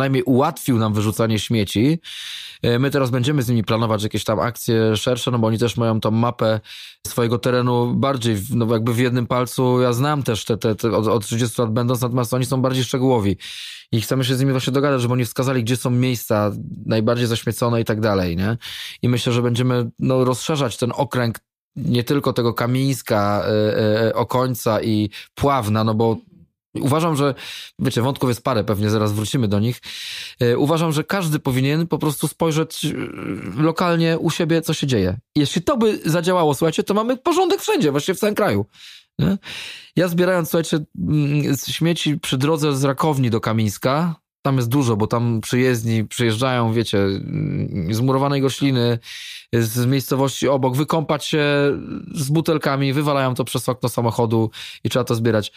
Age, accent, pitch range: 20-39, native, 115-145 Hz